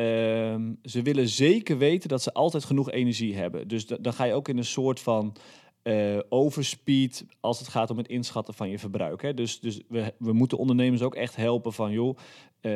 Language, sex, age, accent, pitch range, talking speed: Dutch, male, 40-59, Dutch, 110-130 Hz, 210 wpm